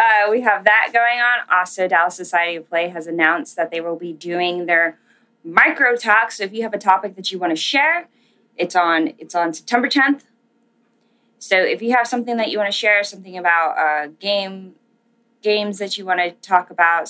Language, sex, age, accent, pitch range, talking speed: English, female, 20-39, American, 170-230 Hz, 205 wpm